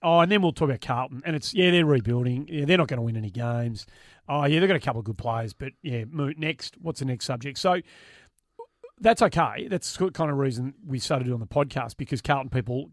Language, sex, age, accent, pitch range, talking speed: English, male, 40-59, Australian, 130-160 Hz, 240 wpm